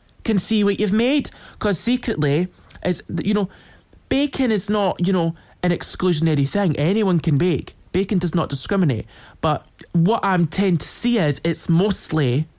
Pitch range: 145-195 Hz